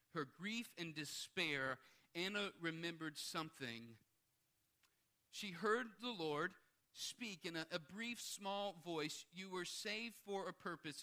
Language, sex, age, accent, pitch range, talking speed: English, male, 50-69, American, 130-185 Hz, 130 wpm